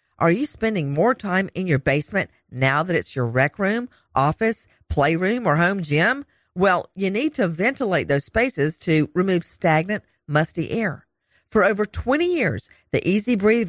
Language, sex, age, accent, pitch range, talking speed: English, female, 50-69, American, 160-235 Hz, 160 wpm